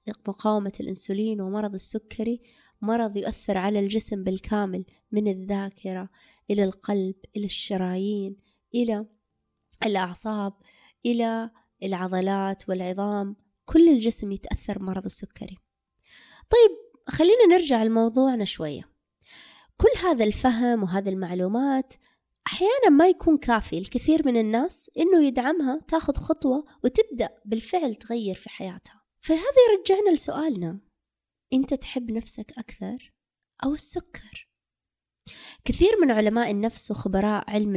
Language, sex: Arabic, female